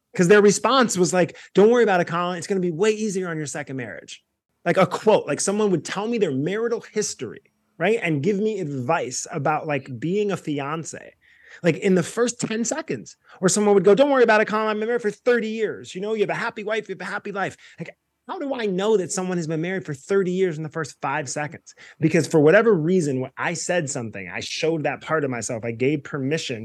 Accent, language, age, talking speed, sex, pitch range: American, English, 30-49, 245 wpm, male, 130-190 Hz